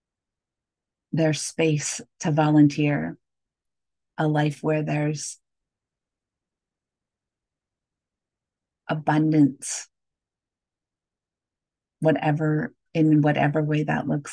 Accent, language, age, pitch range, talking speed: American, English, 40-59, 140-155 Hz, 65 wpm